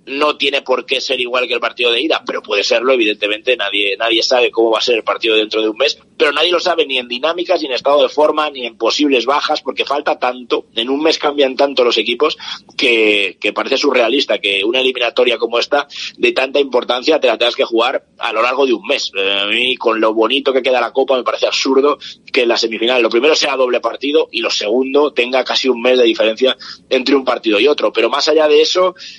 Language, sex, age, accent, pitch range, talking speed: Spanish, male, 30-49, Spanish, 120-195 Hz, 240 wpm